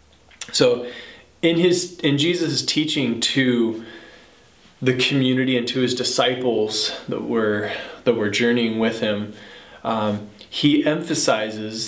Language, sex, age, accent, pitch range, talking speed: English, male, 20-39, American, 115-140 Hz, 115 wpm